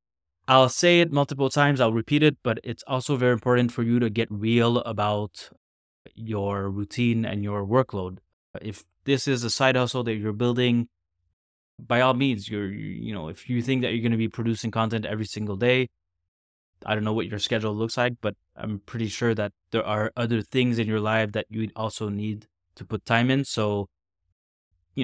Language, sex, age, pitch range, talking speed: English, male, 20-39, 100-125 Hz, 195 wpm